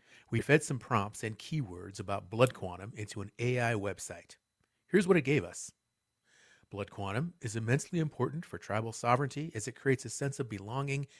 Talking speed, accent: 175 wpm, American